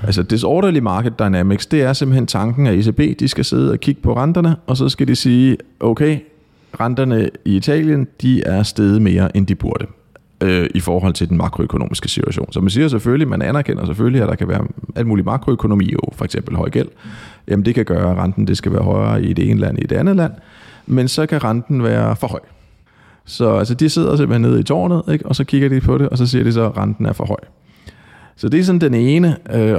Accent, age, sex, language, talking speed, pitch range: native, 30-49, male, Danish, 235 wpm, 100-130 Hz